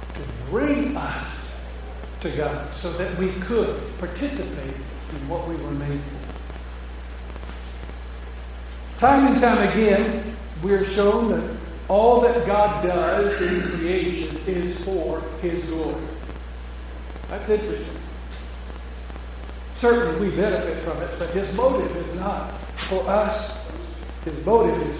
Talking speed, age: 120 wpm, 60-79